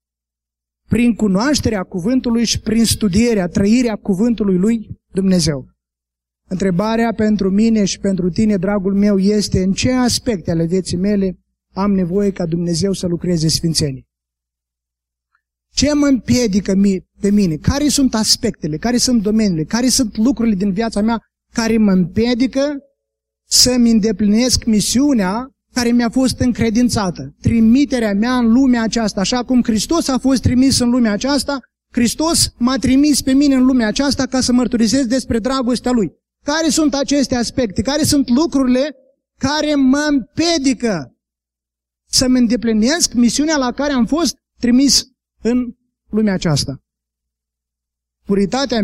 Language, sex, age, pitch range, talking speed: Romanian, male, 20-39, 170-250 Hz, 135 wpm